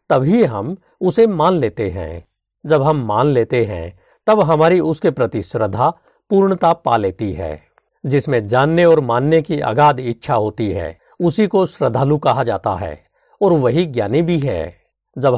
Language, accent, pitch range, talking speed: Hindi, native, 110-165 Hz, 160 wpm